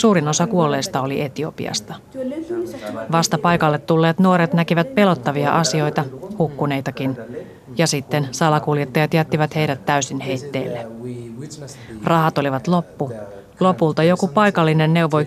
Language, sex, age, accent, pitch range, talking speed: Finnish, female, 30-49, native, 140-180 Hz, 105 wpm